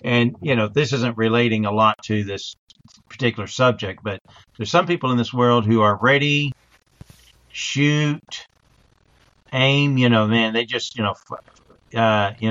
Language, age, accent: English, 50-69, American